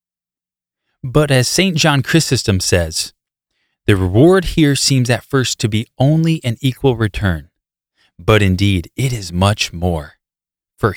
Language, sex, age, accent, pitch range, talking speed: English, male, 20-39, American, 90-135 Hz, 135 wpm